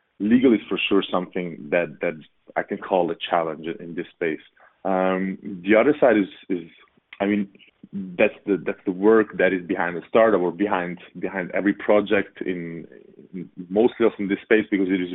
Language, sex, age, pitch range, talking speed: English, male, 30-49, 90-105 Hz, 190 wpm